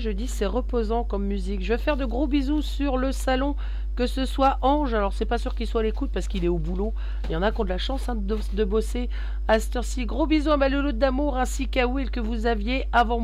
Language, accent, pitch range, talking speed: French, French, 200-260 Hz, 280 wpm